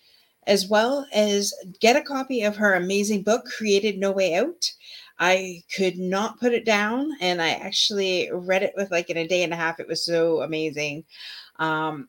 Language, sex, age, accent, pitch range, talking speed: English, female, 30-49, American, 160-200 Hz, 190 wpm